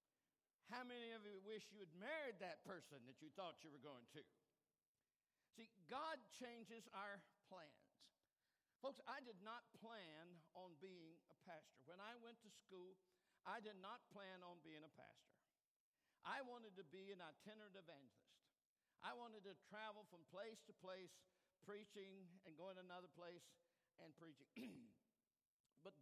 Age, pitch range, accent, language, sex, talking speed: 60-79, 165-220 Hz, American, English, male, 155 wpm